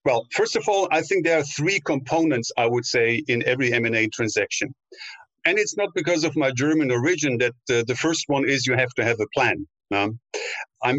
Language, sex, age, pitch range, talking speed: English, male, 50-69, 120-160 Hz, 205 wpm